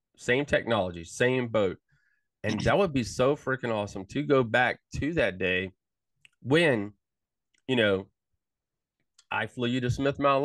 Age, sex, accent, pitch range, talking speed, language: 30-49, male, American, 110-155 Hz, 150 wpm, English